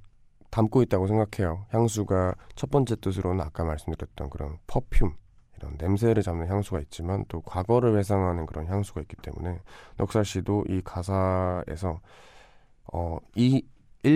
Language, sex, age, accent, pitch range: Korean, male, 20-39, native, 85-110 Hz